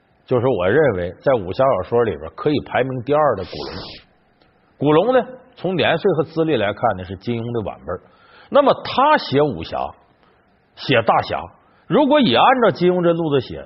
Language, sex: Chinese, male